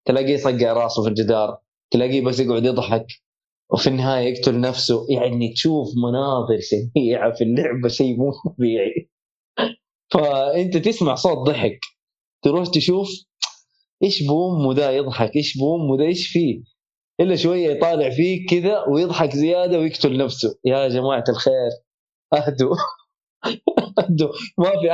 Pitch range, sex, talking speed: 120-165 Hz, male, 130 wpm